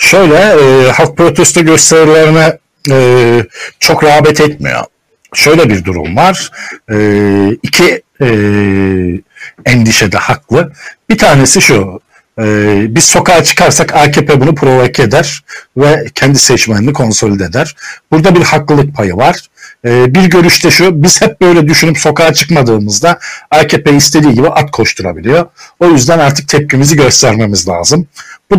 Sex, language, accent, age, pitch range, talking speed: male, Turkish, native, 60-79, 120-160 Hz, 130 wpm